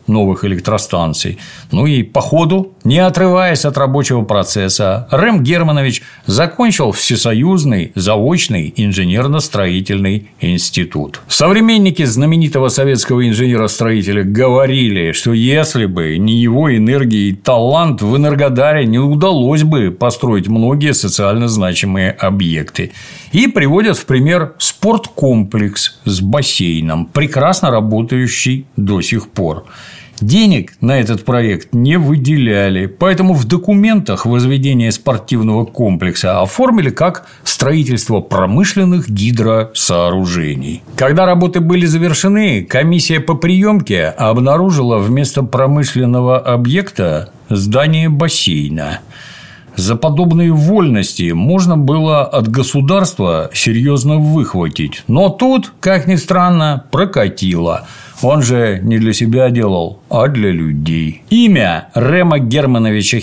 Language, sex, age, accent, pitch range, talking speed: Russian, male, 50-69, native, 105-160 Hz, 105 wpm